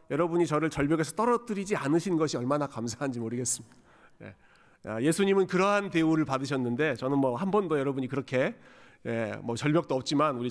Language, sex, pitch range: Korean, male, 125-185 Hz